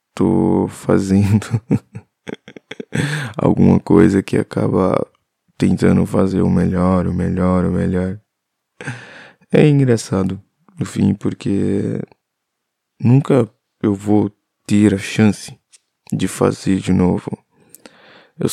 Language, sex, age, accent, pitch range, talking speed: Portuguese, male, 20-39, Brazilian, 95-110 Hz, 95 wpm